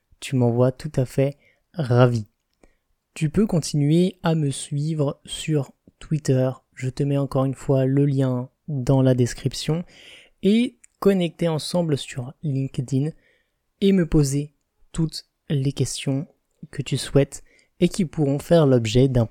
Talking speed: 145 wpm